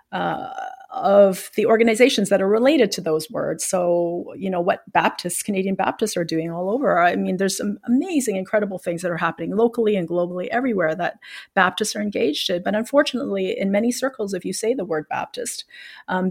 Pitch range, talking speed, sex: 175-210 Hz, 190 wpm, female